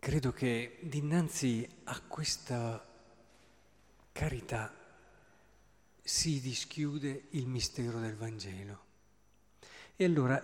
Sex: male